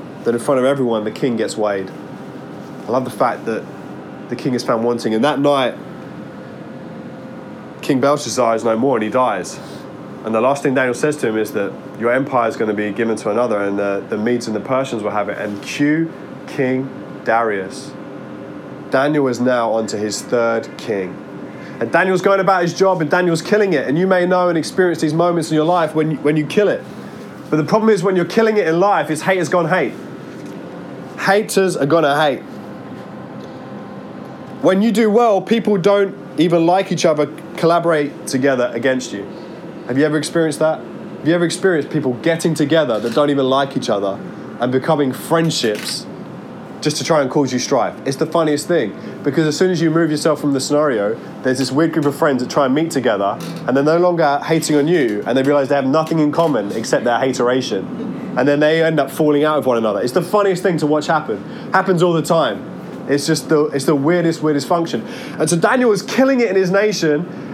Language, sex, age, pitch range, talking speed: English, male, 20-39, 135-175 Hz, 210 wpm